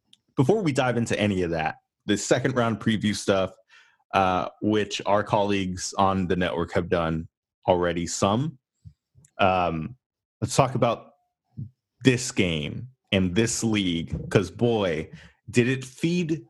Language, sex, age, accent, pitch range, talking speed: English, male, 30-49, American, 95-130 Hz, 135 wpm